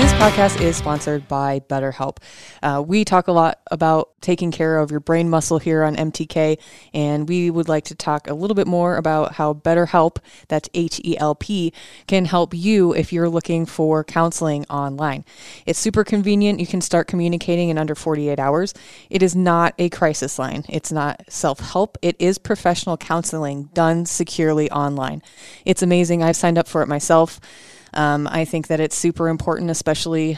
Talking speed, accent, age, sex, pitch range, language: 175 wpm, American, 20-39, female, 155-175 Hz, English